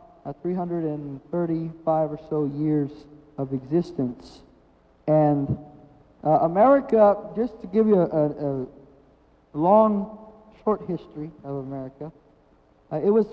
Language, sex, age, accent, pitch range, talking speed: English, male, 50-69, American, 155-215 Hz, 115 wpm